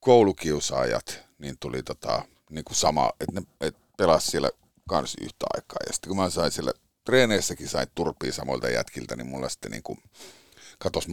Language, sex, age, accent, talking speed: Finnish, male, 50-69, native, 165 wpm